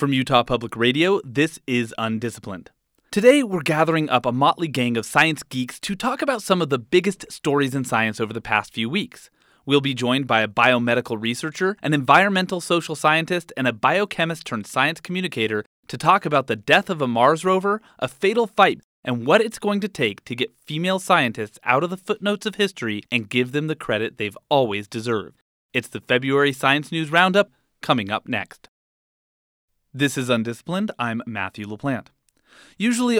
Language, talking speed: English, 180 wpm